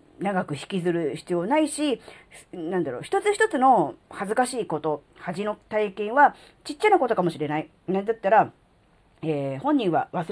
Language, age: Japanese, 40-59